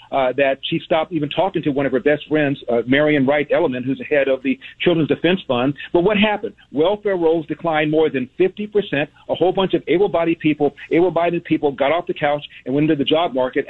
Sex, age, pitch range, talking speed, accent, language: male, 50-69, 140-170 Hz, 225 wpm, American, English